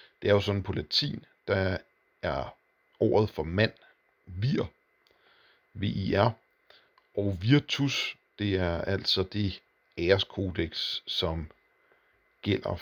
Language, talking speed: Danish, 105 wpm